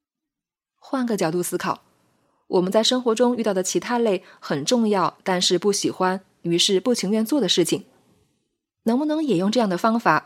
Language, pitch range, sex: Chinese, 175-225 Hz, female